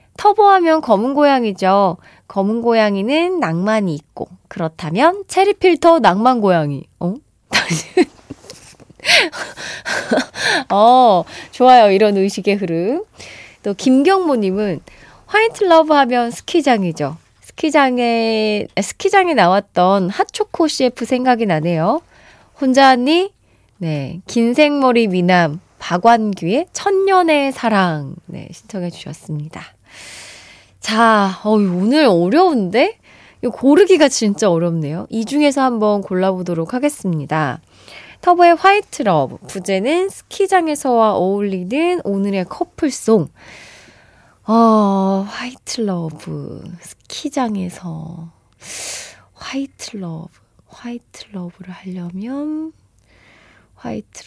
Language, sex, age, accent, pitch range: Korean, female, 20-39, native, 180-290 Hz